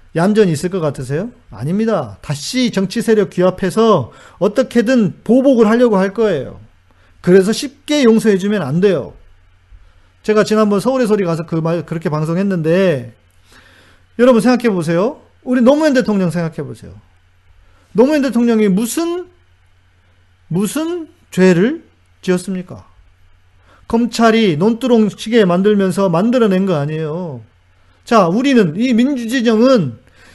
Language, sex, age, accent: Korean, male, 40-59, native